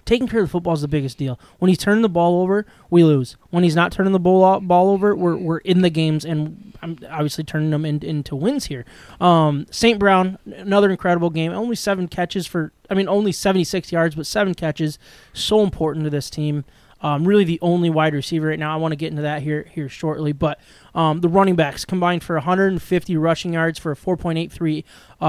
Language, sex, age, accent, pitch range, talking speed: English, male, 20-39, American, 155-185 Hz, 220 wpm